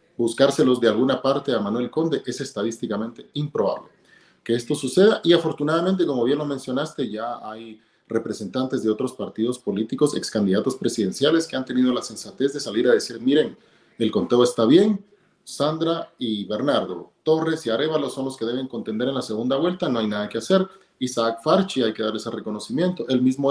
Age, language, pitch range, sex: 40-59, Spanish, 115-155 Hz, male